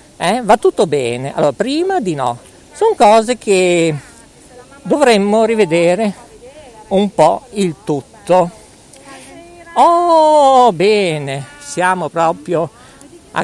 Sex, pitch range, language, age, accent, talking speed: male, 140-205 Hz, Italian, 50-69, native, 100 wpm